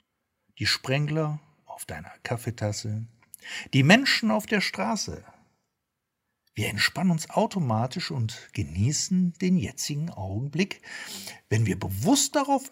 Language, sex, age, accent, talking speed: German, male, 60-79, German, 110 wpm